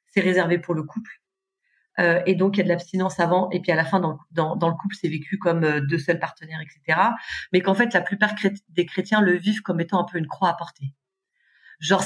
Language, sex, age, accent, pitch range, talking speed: French, female, 40-59, French, 165-205 Hz, 245 wpm